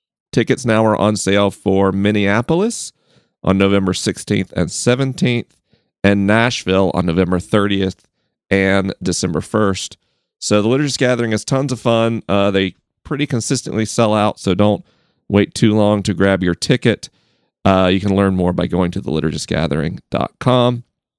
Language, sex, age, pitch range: English, male, 40-59, 95-125 Hz